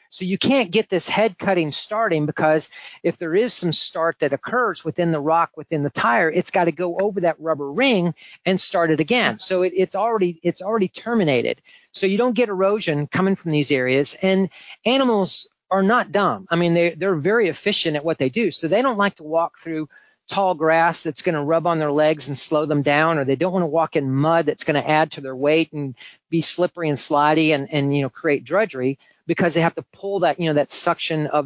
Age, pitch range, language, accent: 40-59, 155-190 Hz, English, American